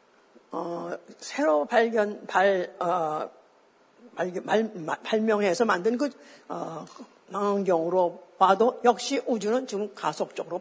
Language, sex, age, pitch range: Korean, female, 50-69, 195-265 Hz